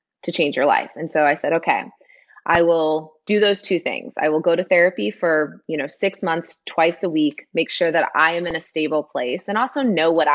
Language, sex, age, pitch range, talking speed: English, female, 20-39, 160-210 Hz, 240 wpm